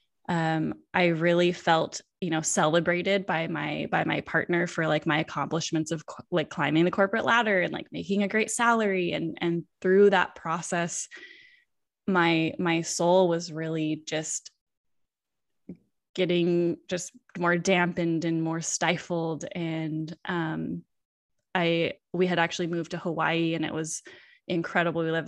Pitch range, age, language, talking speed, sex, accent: 160-185 Hz, 10-29, English, 145 wpm, female, American